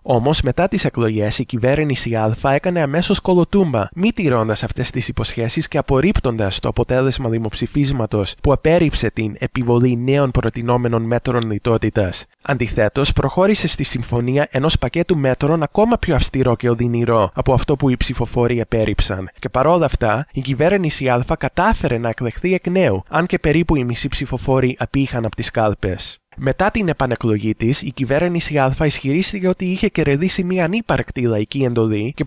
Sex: male